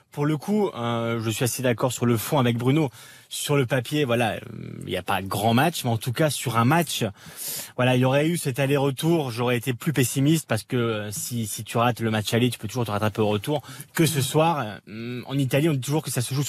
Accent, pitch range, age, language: French, 115-145 Hz, 20-39, French